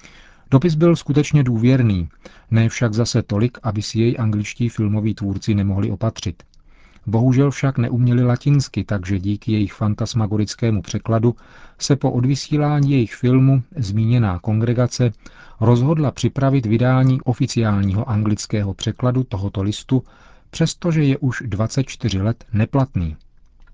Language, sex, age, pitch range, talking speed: Czech, male, 40-59, 105-125 Hz, 115 wpm